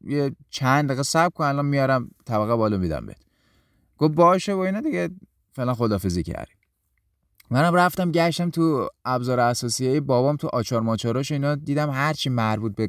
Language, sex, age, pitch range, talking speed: Persian, male, 30-49, 115-155 Hz, 160 wpm